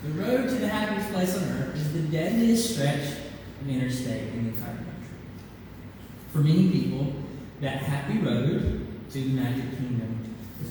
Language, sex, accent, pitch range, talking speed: English, male, American, 135-205 Hz, 170 wpm